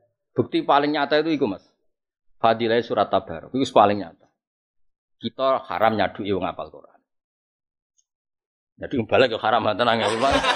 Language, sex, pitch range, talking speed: Indonesian, male, 105-160 Hz, 140 wpm